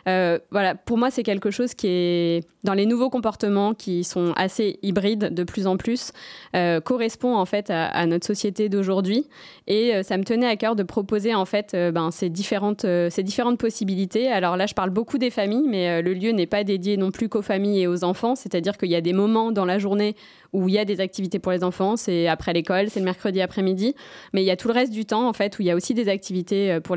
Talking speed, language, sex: 260 wpm, French, female